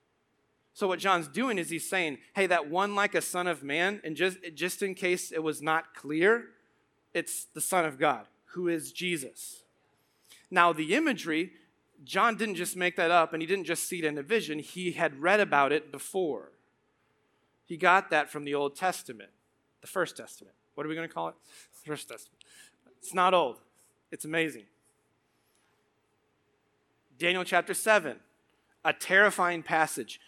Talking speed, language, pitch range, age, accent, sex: 170 wpm, English, 155-180 Hz, 30-49, American, male